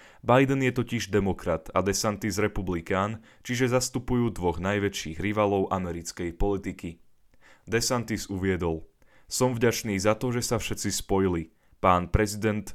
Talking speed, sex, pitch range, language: 120 wpm, male, 95-115 Hz, Slovak